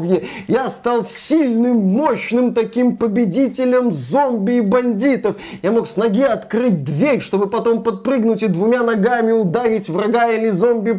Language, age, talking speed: Russian, 30-49, 135 wpm